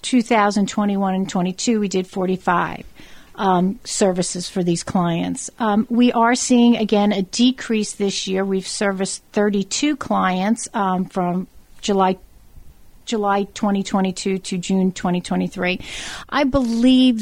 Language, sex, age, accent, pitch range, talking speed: English, female, 50-69, American, 185-225 Hz, 120 wpm